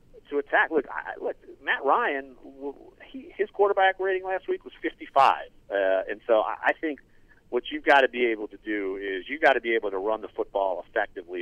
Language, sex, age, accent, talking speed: English, male, 40-59, American, 210 wpm